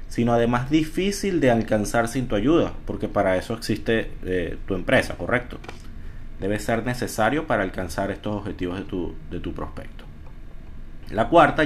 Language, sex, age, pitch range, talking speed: Spanish, male, 30-49, 95-120 Hz, 155 wpm